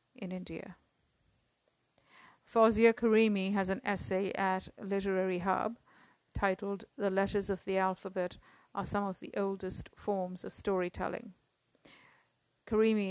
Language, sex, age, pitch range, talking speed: English, female, 50-69, 185-215 Hz, 115 wpm